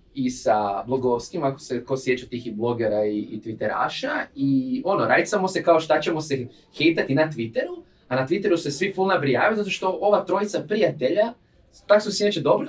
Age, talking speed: 20-39, 190 wpm